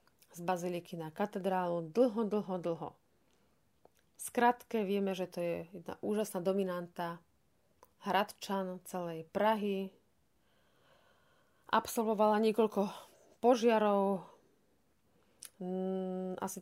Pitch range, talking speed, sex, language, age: 185-220 Hz, 80 wpm, female, Slovak, 30-49